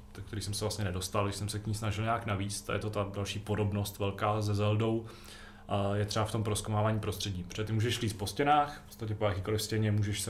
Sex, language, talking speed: male, Czech, 235 wpm